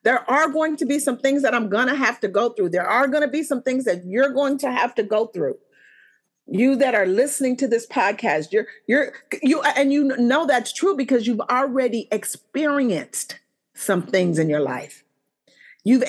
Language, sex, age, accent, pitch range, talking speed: English, female, 40-59, American, 195-275 Hz, 205 wpm